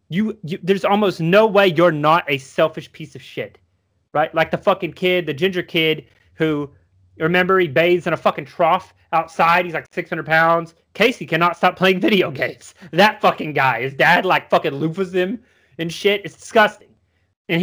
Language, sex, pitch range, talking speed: English, male, 135-190 Hz, 185 wpm